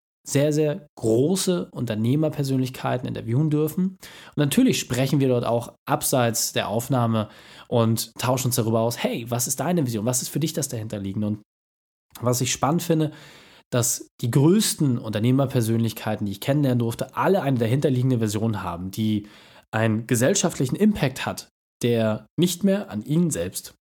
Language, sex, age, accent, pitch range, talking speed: German, male, 10-29, German, 115-155 Hz, 150 wpm